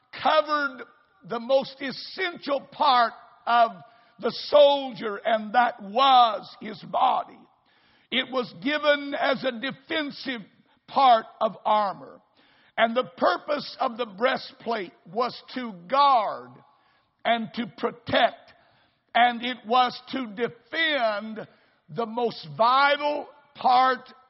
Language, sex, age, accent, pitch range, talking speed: English, male, 60-79, American, 225-275 Hz, 105 wpm